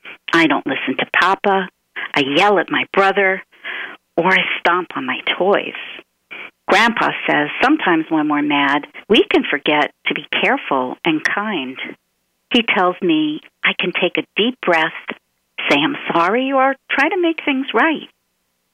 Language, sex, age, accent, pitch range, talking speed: English, female, 50-69, American, 160-265 Hz, 155 wpm